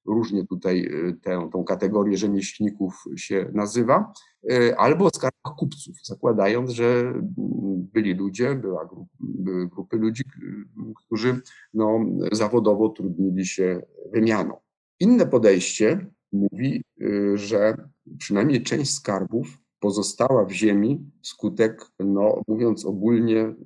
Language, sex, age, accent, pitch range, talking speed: Polish, male, 50-69, native, 100-120 Hz, 90 wpm